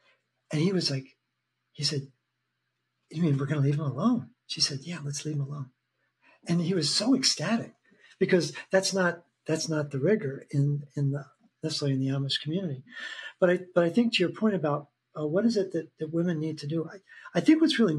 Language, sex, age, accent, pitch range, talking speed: English, male, 50-69, American, 145-175 Hz, 220 wpm